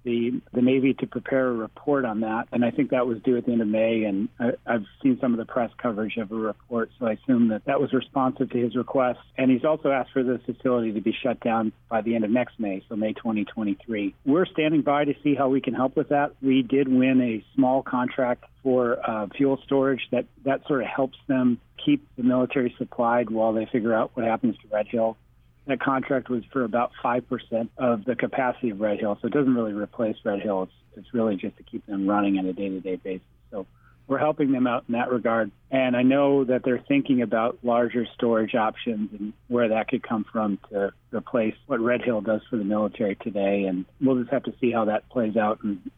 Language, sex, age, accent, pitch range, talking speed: English, male, 40-59, American, 110-130 Hz, 230 wpm